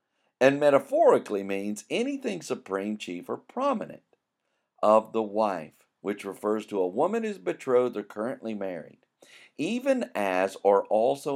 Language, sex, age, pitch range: English, male, 50-69, 105-155 Hz